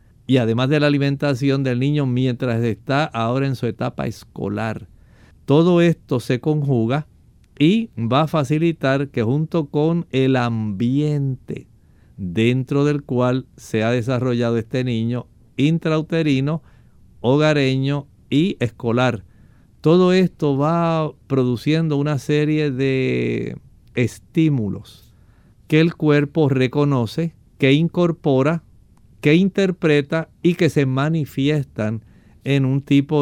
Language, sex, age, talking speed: Spanish, male, 50-69, 110 wpm